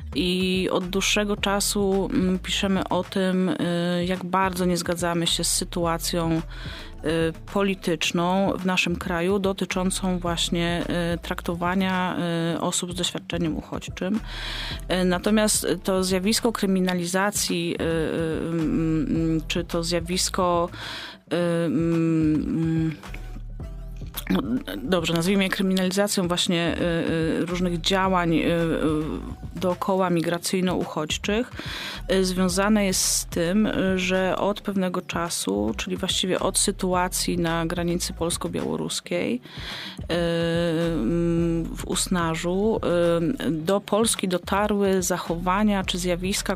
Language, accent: Polish, native